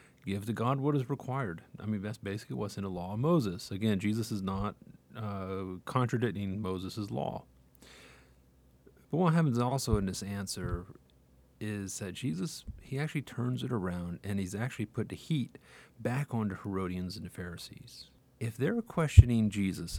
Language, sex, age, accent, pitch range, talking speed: English, male, 40-59, American, 90-115 Hz, 165 wpm